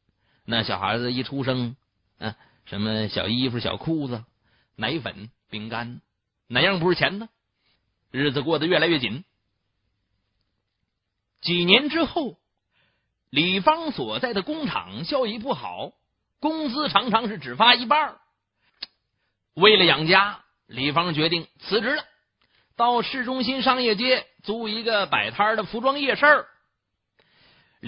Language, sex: Chinese, male